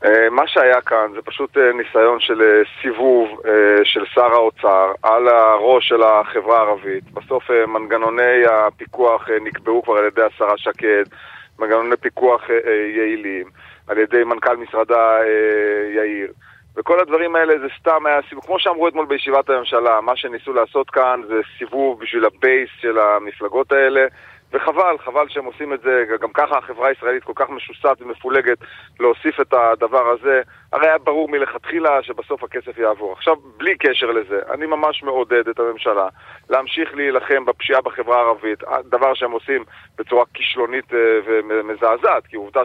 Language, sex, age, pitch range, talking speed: Hebrew, male, 30-49, 110-140 Hz, 145 wpm